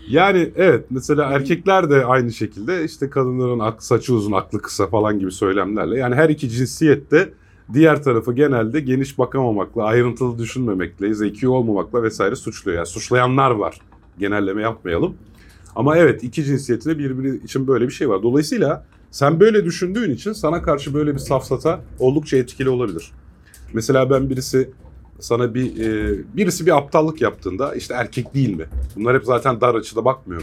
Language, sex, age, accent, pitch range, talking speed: Turkish, male, 40-59, native, 100-135 Hz, 160 wpm